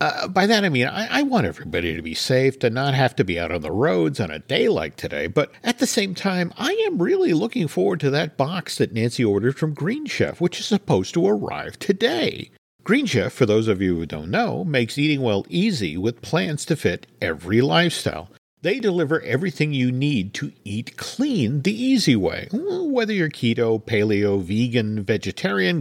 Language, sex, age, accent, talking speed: English, male, 50-69, American, 200 wpm